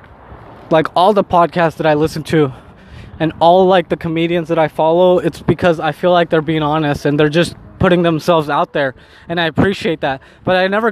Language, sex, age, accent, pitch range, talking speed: English, male, 20-39, American, 160-200 Hz, 210 wpm